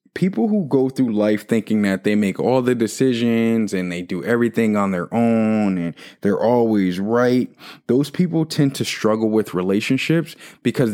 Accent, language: American, English